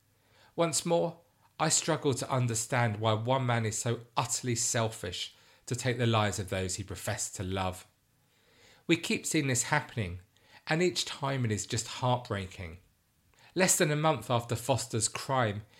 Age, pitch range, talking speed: 40-59, 105-130 Hz, 160 wpm